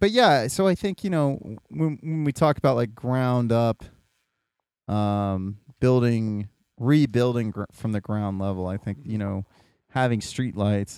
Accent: American